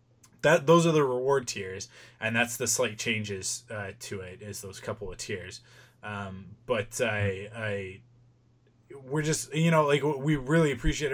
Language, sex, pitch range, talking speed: English, male, 105-125 Hz, 165 wpm